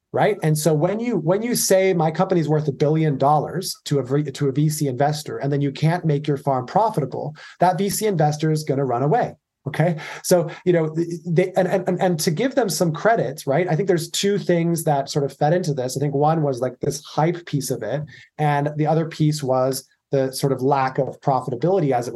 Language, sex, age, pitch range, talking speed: English, male, 30-49, 140-180 Hz, 225 wpm